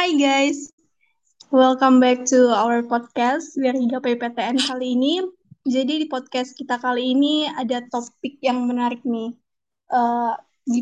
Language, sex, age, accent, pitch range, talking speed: Indonesian, female, 20-39, native, 250-290 Hz, 135 wpm